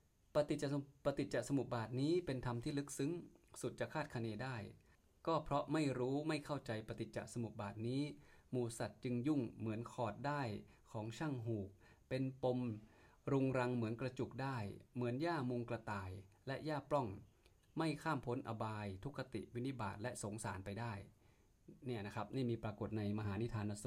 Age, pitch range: 20-39, 110-140 Hz